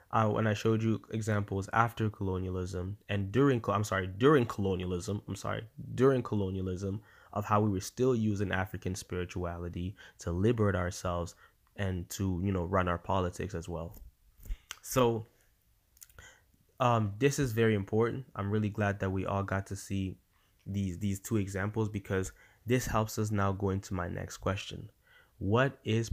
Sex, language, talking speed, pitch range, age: male, English, 160 wpm, 95-115 Hz, 20-39